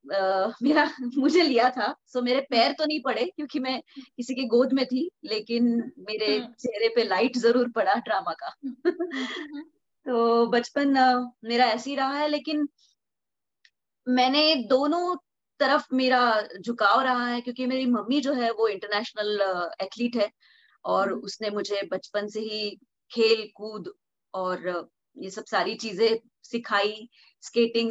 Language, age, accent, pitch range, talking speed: Hindi, 20-39, native, 210-270 Hz, 145 wpm